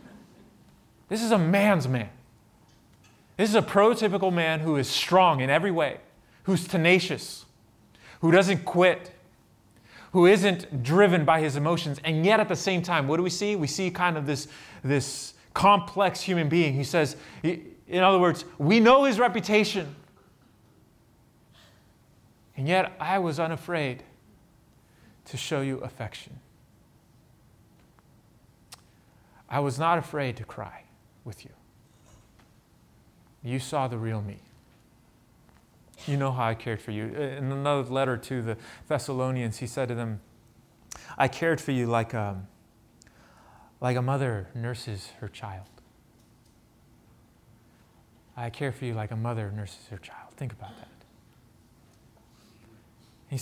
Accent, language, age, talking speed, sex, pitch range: American, English, 30-49, 135 wpm, male, 115-170 Hz